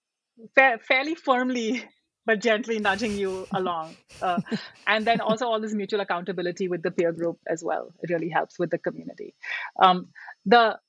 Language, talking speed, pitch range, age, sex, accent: English, 165 wpm, 190-240 Hz, 30-49, female, Indian